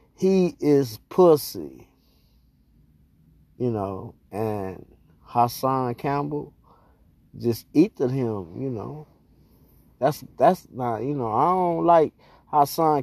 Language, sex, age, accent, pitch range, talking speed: English, male, 20-39, American, 115-145 Hz, 100 wpm